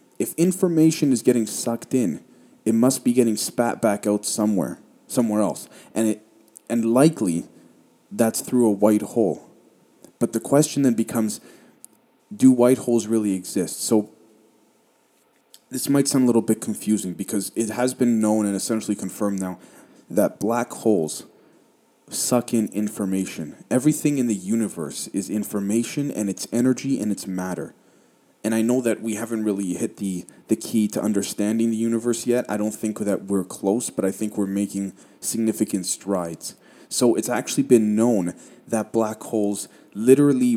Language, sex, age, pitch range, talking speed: English, male, 20-39, 100-120 Hz, 160 wpm